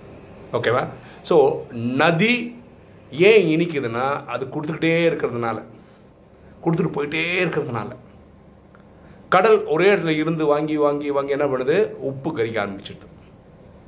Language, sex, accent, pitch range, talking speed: Tamil, male, native, 130-190 Hz, 95 wpm